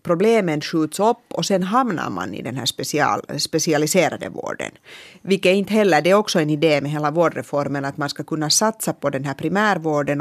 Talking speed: 200 wpm